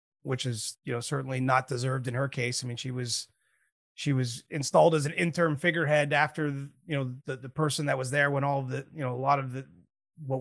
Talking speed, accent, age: 235 wpm, American, 30-49